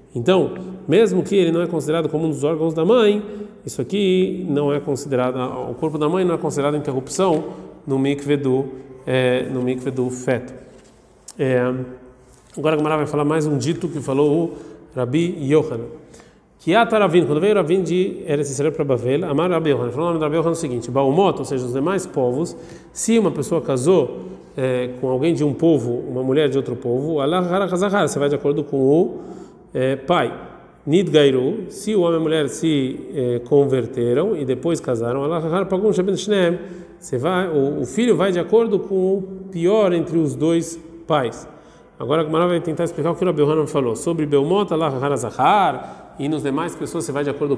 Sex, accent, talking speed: male, Brazilian, 180 wpm